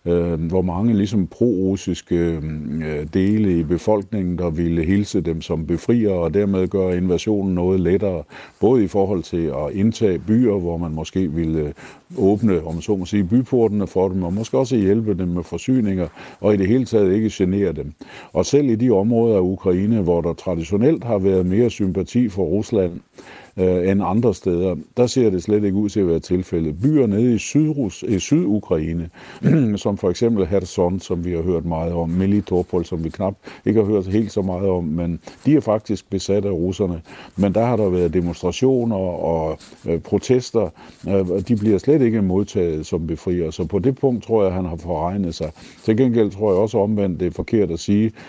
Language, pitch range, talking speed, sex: Danish, 85-105 Hz, 190 wpm, male